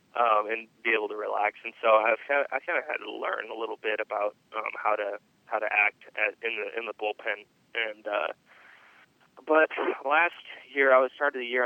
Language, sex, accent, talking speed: English, male, American, 210 wpm